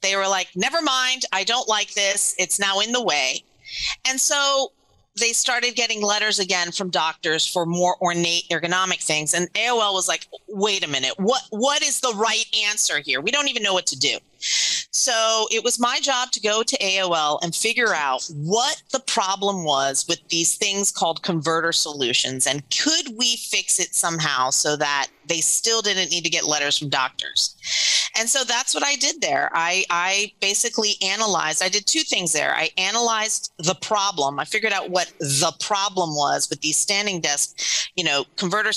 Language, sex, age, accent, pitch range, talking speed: English, female, 40-59, American, 170-230 Hz, 190 wpm